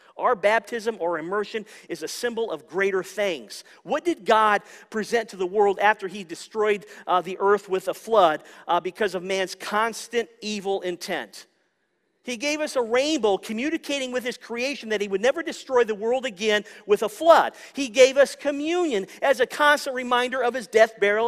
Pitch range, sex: 215-290 Hz, male